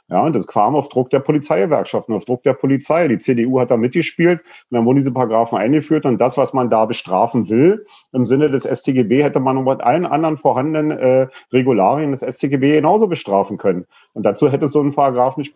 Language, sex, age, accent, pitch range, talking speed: German, male, 40-59, German, 125-150 Hz, 210 wpm